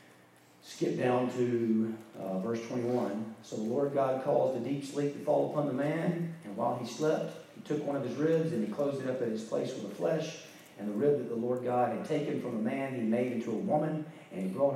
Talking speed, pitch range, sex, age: 245 wpm, 120-160 Hz, male, 40-59